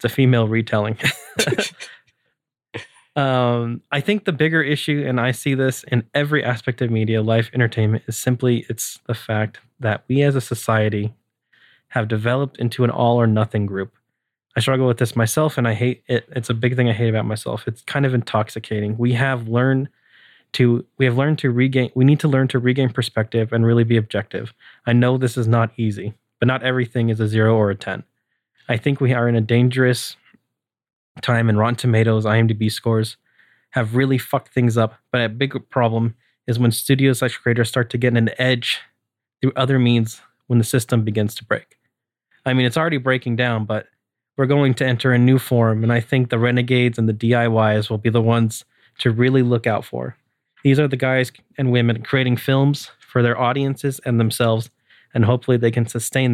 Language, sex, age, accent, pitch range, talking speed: English, male, 20-39, American, 115-130 Hz, 195 wpm